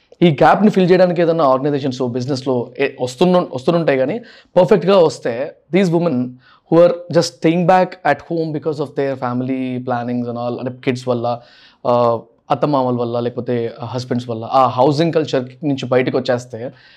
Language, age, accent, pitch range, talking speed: Telugu, 20-39, native, 125-175 Hz, 145 wpm